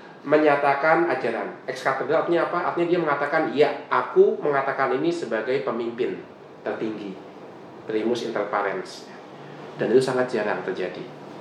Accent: native